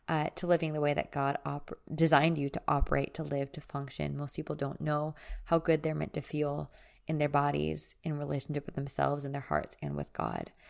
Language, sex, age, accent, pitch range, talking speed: English, female, 20-39, American, 140-170 Hz, 215 wpm